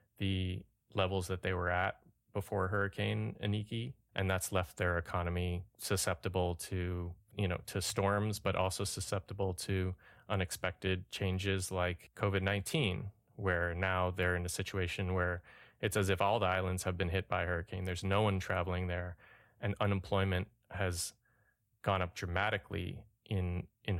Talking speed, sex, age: 150 wpm, male, 20-39